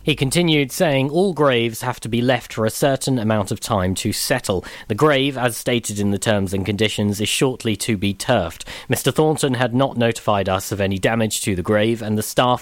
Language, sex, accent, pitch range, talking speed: English, male, British, 110-145 Hz, 220 wpm